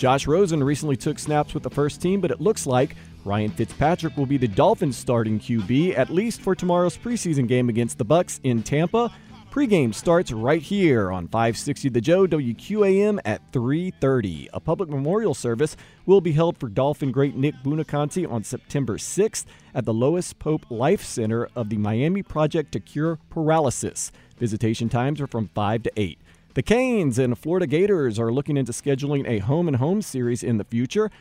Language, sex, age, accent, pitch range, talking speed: English, male, 40-59, American, 120-170 Hz, 180 wpm